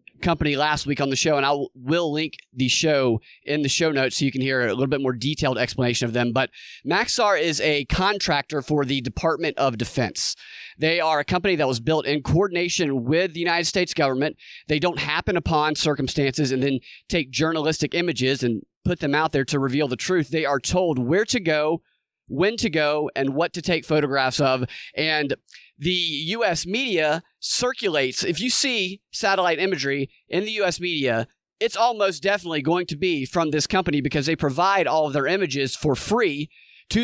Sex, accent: male, American